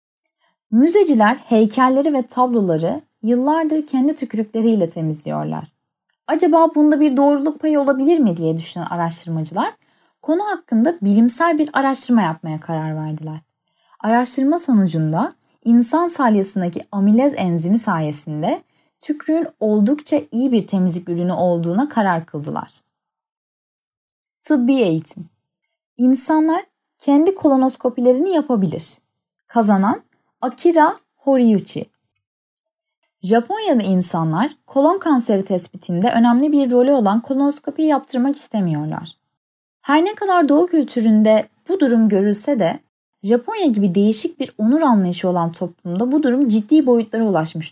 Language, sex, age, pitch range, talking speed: Turkish, female, 10-29, 180-290 Hz, 105 wpm